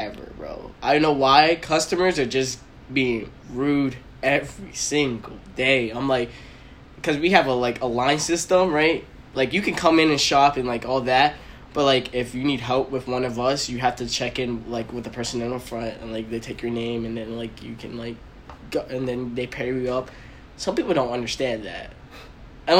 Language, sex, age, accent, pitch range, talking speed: English, male, 10-29, American, 125-160 Hz, 220 wpm